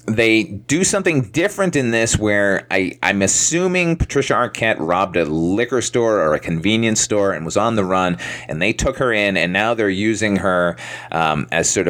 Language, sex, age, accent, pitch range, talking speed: English, male, 30-49, American, 95-130 Hz, 190 wpm